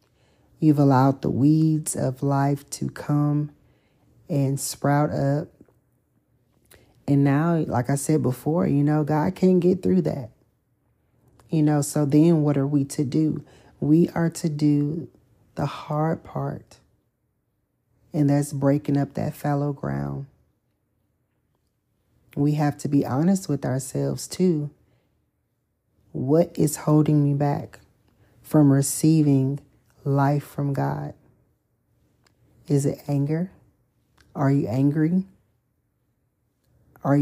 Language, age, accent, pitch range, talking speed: English, 40-59, American, 135-155 Hz, 115 wpm